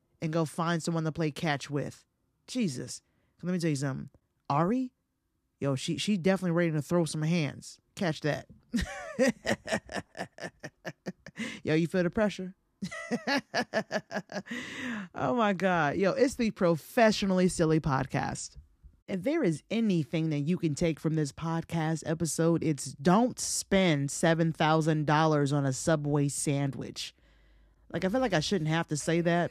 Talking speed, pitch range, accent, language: 145 wpm, 160-210 Hz, American, English